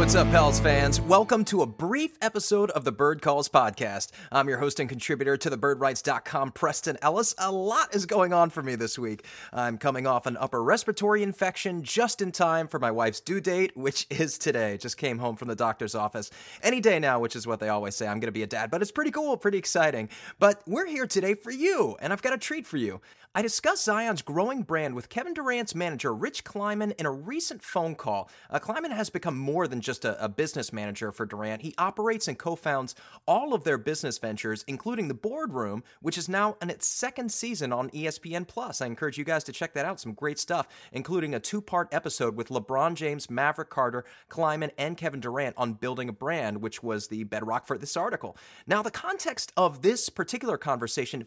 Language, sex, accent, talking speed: English, male, American, 215 wpm